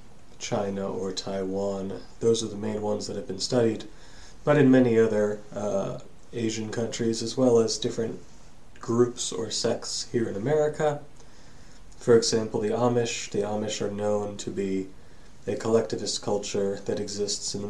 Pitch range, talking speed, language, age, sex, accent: 105-120 Hz, 155 wpm, English, 30-49, male, American